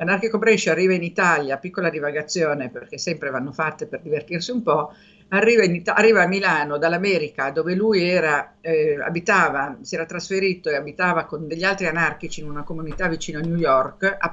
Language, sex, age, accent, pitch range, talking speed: Italian, female, 50-69, native, 165-215 Hz, 170 wpm